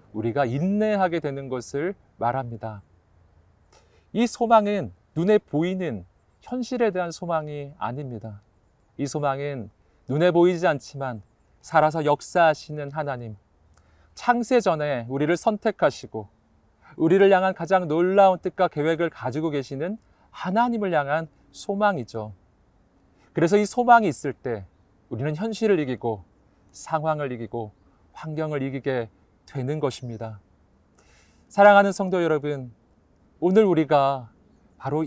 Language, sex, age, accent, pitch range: Korean, male, 40-59, native, 115-180 Hz